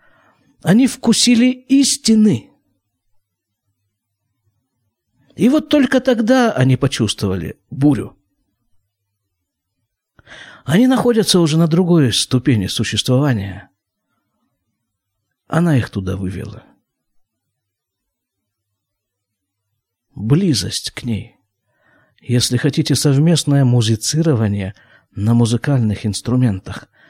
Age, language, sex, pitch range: 50-69, Russian, male, 100-145 Hz